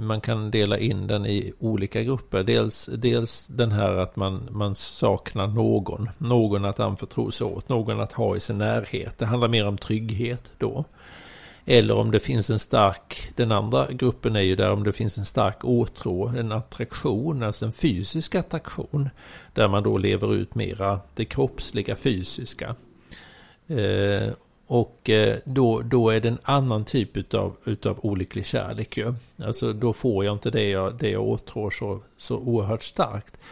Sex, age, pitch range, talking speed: male, 50-69, 100-120 Hz, 170 wpm